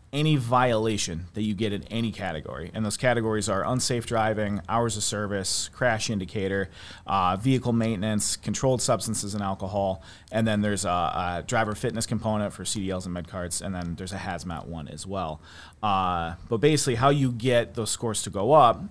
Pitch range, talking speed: 90-115 Hz, 185 wpm